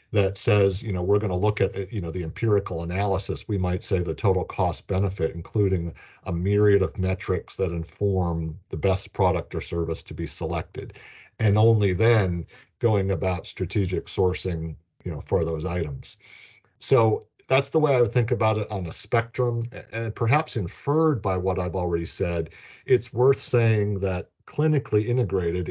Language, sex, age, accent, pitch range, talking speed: English, male, 50-69, American, 90-110 Hz, 175 wpm